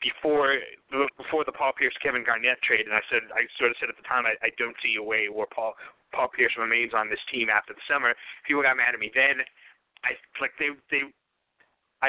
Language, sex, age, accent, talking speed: English, male, 30-49, American, 225 wpm